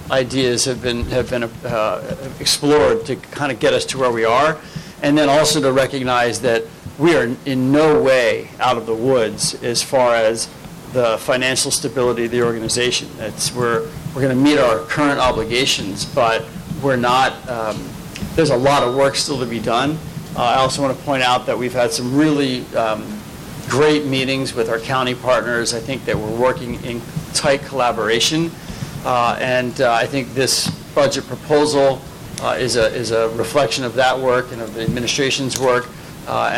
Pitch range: 125-150 Hz